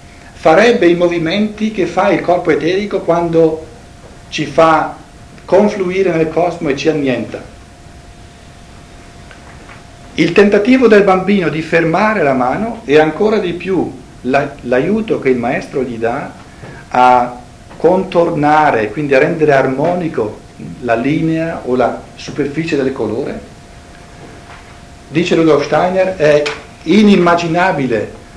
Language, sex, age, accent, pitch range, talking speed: Italian, male, 60-79, native, 130-175 Hz, 110 wpm